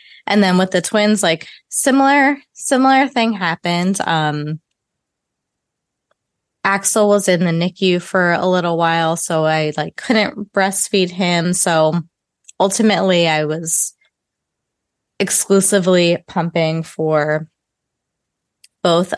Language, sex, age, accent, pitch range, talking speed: English, female, 20-39, American, 160-195 Hz, 105 wpm